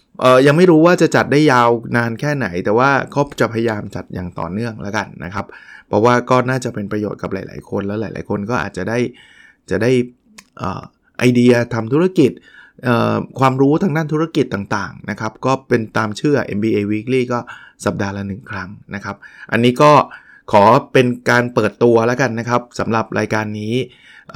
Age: 20-39